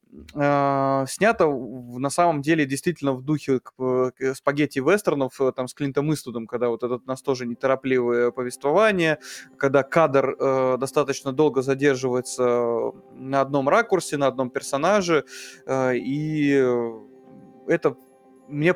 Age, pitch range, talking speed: 20-39, 130-150 Hz, 115 wpm